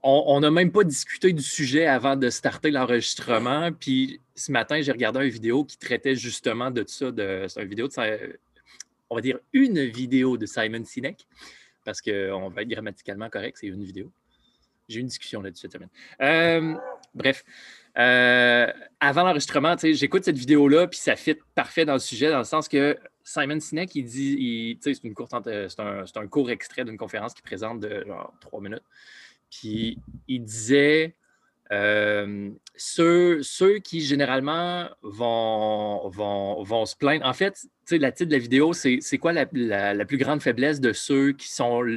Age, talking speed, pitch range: 20-39, 180 wpm, 115-160 Hz